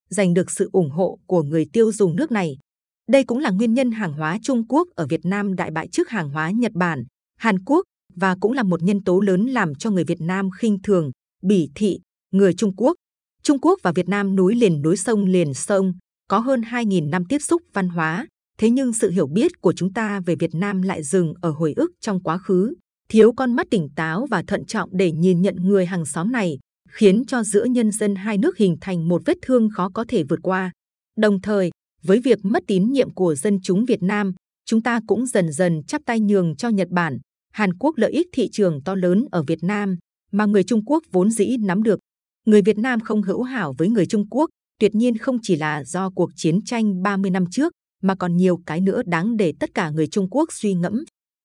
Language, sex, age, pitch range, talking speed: Vietnamese, female, 20-39, 180-225 Hz, 230 wpm